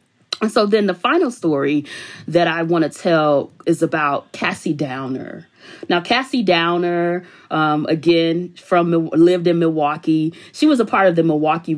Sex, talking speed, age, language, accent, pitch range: female, 160 wpm, 30-49, English, American, 155-220 Hz